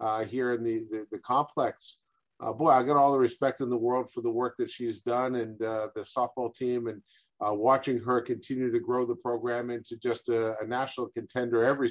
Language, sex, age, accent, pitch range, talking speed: English, male, 50-69, American, 115-130 Hz, 220 wpm